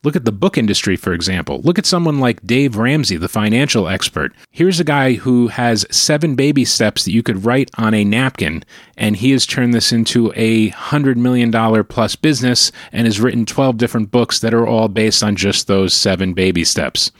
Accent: American